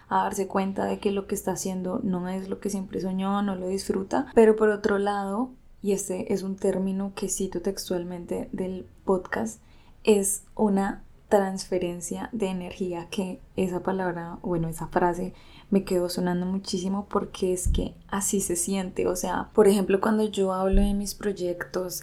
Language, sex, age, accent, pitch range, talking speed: Spanish, female, 10-29, Colombian, 190-220 Hz, 170 wpm